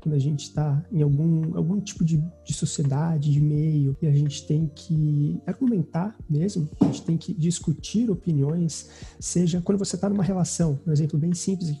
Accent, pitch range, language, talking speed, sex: Brazilian, 150-180 Hz, Portuguese, 190 wpm, male